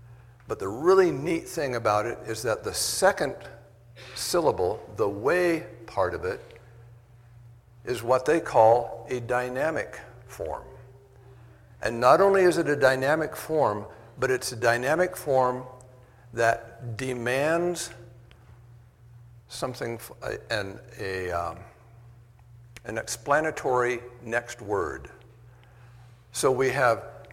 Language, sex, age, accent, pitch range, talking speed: English, male, 60-79, American, 120-125 Hz, 110 wpm